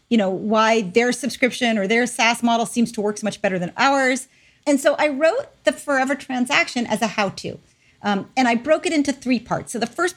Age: 40-59